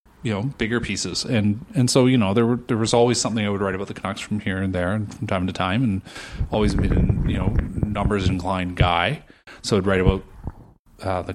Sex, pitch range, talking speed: male, 95-120 Hz, 235 wpm